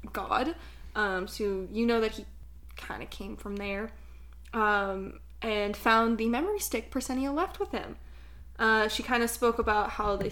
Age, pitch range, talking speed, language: 20-39, 180-235 Hz, 175 wpm, English